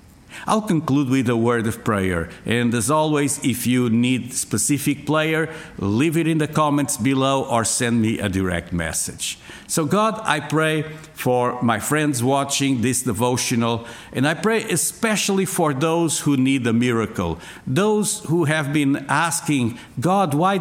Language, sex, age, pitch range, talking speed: English, male, 50-69, 115-160 Hz, 160 wpm